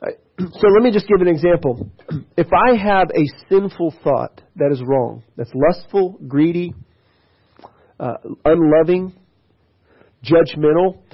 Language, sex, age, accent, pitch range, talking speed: English, male, 40-59, American, 145-195 Hz, 120 wpm